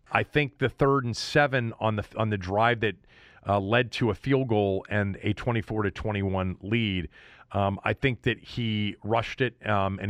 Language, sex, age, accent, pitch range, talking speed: English, male, 40-59, American, 95-125 Hz, 200 wpm